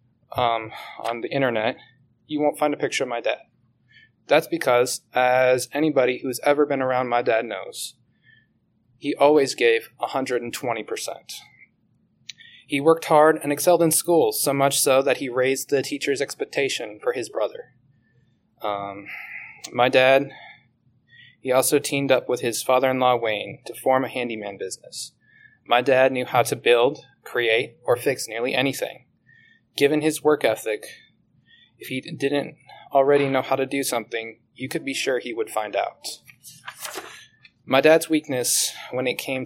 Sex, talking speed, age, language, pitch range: male, 150 wpm, 20-39, English, 125-155 Hz